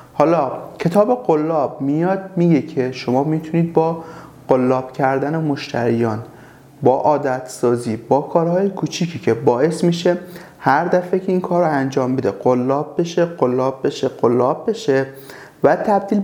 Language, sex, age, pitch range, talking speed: Persian, male, 30-49, 140-175 Hz, 135 wpm